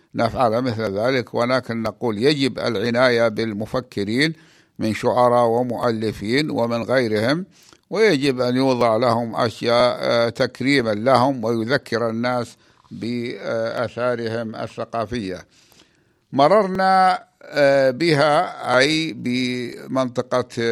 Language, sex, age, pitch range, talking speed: Arabic, male, 60-79, 120-150 Hz, 80 wpm